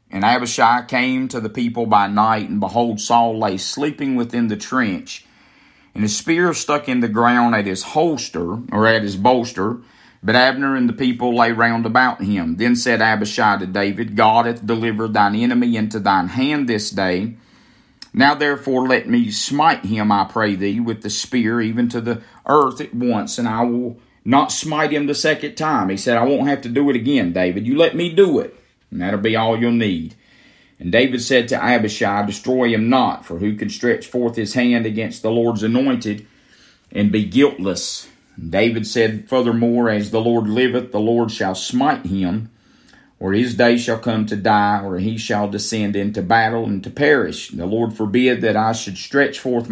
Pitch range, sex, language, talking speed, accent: 105-125 Hz, male, English, 195 wpm, American